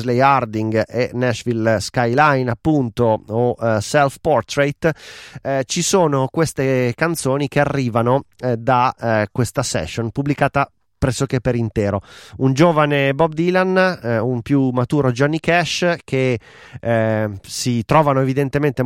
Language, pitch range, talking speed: Italian, 115-145 Hz, 125 wpm